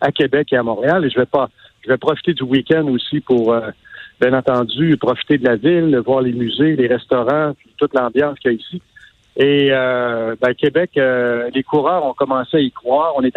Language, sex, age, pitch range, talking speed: French, male, 50-69, 125-150 Hz, 220 wpm